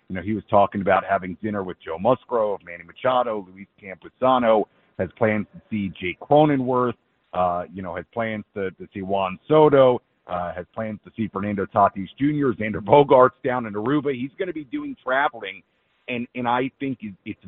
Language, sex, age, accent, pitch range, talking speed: English, male, 50-69, American, 105-130 Hz, 190 wpm